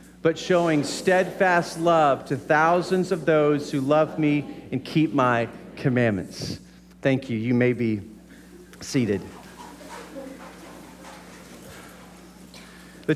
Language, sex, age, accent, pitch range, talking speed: English, male, 40-59, American, 150-190 Hz, 100 wpm